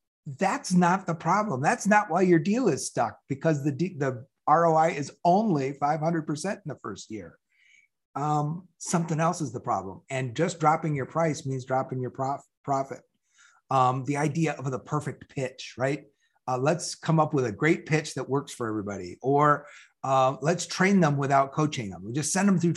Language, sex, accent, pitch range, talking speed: English, male, American, 135-170 Hz, 185 wpm